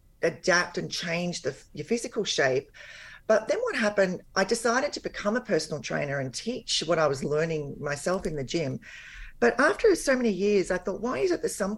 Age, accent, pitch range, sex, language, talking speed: 40-59, Australian, 155-215 Hz, female, English, 205 wpm